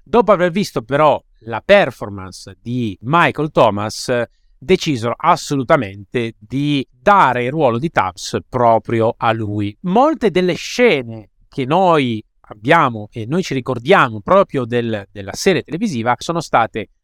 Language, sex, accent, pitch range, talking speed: Italian, male, native, 115-175 Hz, 125 wpm